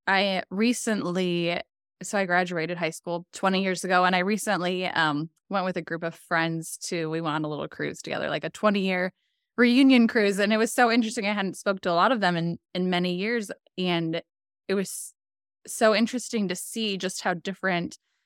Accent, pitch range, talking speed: American, 170-210 Hz, 195 wpm